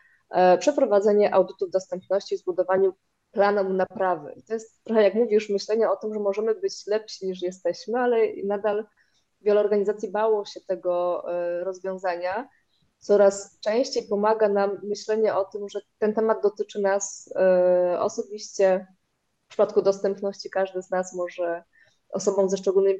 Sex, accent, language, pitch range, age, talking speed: female, native, Polish, 185-215 Hz, 20-39, 140 wpm